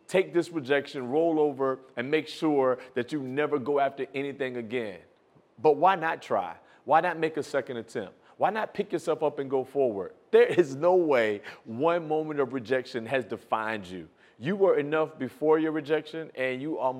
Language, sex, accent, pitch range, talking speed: English, male, American, 130-160 Hz, 185 wpm